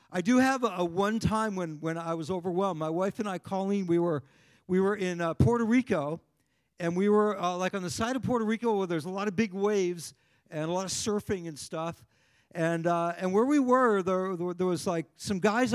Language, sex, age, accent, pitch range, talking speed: English, male, 50-69, American, 155-210 Hz, 235 wpm